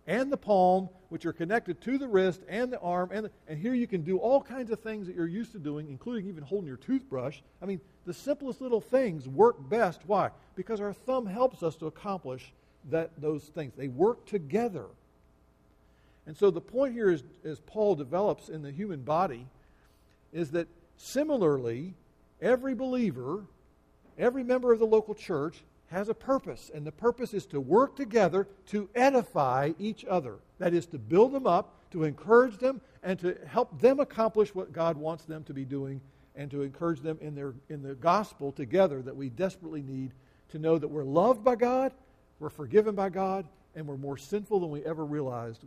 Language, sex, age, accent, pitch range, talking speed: English, male, 50-69, American, 140-215 Hz, 195 wpm